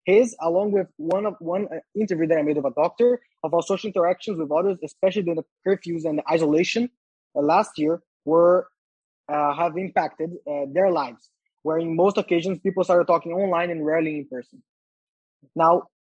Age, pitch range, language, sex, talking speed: 20-39, 150-185 Hz, English, male, 180 wpm